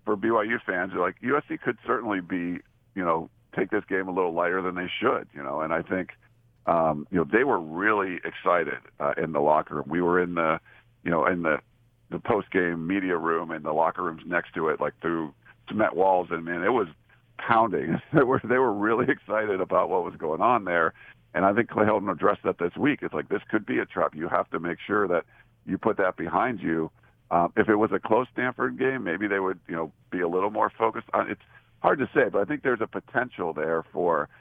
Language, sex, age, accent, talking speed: English, male, 50-69, American, 230 wpm